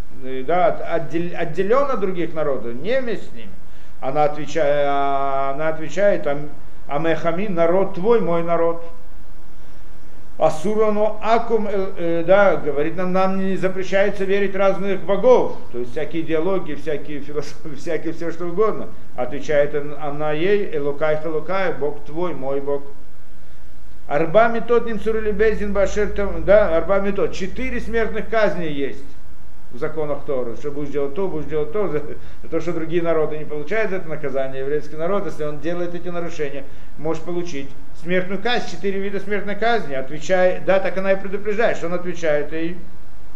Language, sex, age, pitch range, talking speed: Russian, male, 50-69, 150-200 Hz, 140 wpm